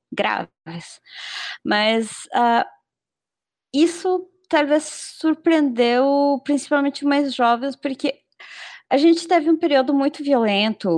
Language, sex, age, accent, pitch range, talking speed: Portuguese, female, 20-39, Brazilian, 210-275 Hz, 100 wpm